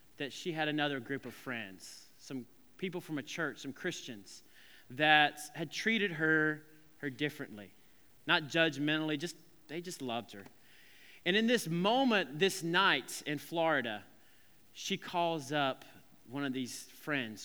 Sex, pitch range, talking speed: male, 140-185 Hz, 145 wpm